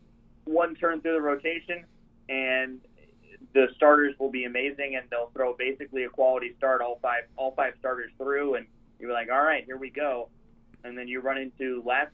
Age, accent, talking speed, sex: 20-39, American, 195 wpm, male